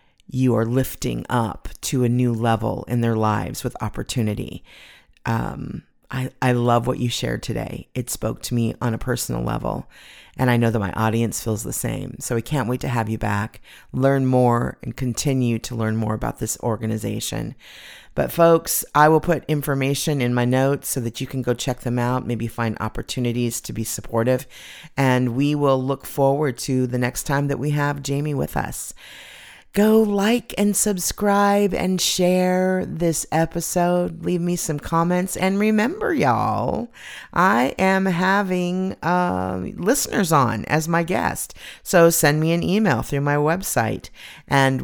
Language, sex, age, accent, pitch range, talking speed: English, female, 40-59, American, 120-165 Hz, 170 wpm